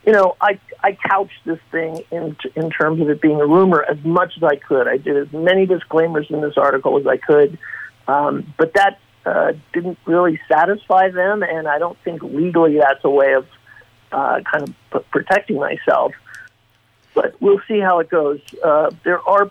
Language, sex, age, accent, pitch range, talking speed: English, male, 50-69, American, 160-190 Hz, 195 wpm